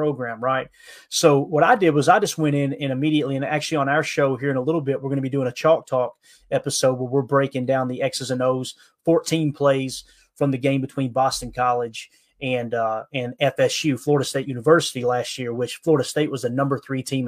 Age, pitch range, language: 30-49, 130-160 Hz, English